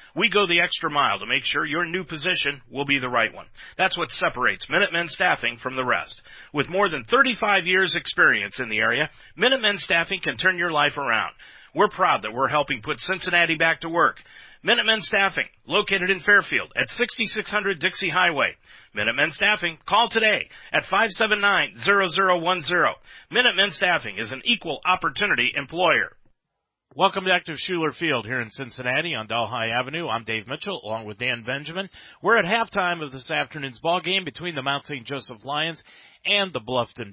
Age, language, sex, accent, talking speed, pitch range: 50-69, English, male, American, 175 wpm, 130-190 Hz